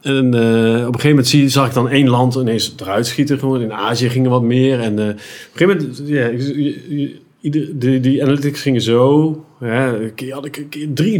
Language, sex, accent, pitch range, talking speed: Dutch, male, Dutch, 115-140 Hz, 190 wpm